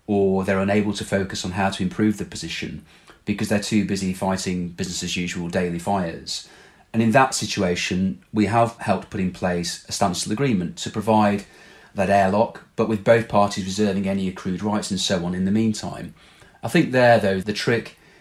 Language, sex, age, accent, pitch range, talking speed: English, male, 30-49, British, 90-110 Hz, 190 wpm